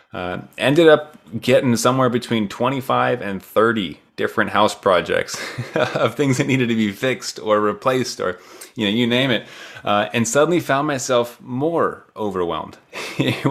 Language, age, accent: English, 20-39, American